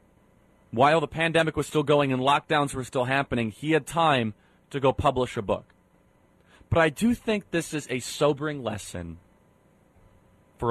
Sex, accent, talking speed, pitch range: male, American, 165 wpm, 105-145 Hz